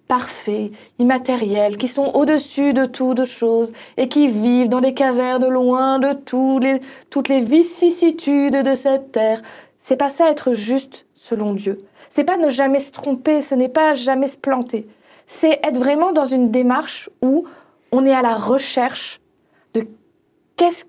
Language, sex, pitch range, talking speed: French, female, 245-295 Hz, 170 wpm